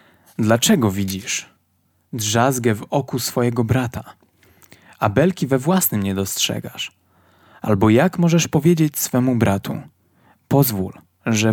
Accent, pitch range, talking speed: native, 110-155 Hz, 110 wpm